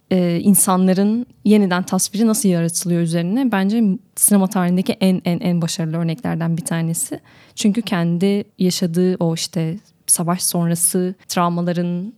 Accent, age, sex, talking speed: native, 10-29, female, 125 wpm